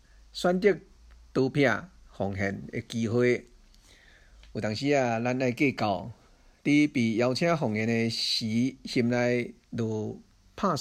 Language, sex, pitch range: Chinese, male, 110-145 Hz